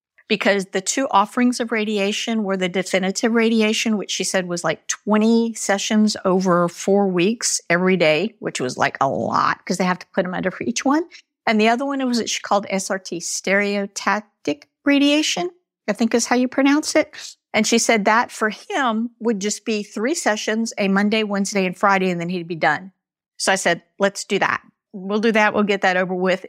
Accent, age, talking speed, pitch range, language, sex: American, 50-69, 205 wpm, 175-220 Hz, English, female